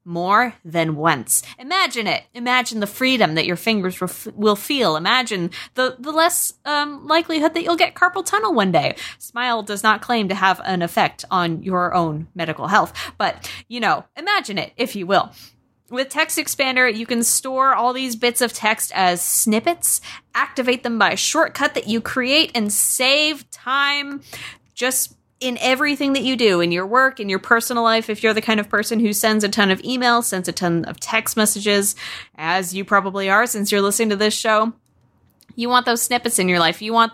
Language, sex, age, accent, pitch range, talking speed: English, female, 20-39, American, 185-255 Hz, 195 wpm